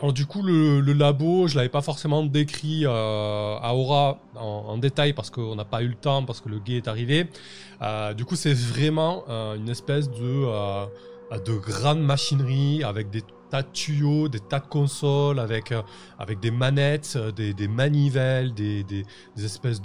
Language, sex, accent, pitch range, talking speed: French, male, French, 110-145 Hz, 190 wpm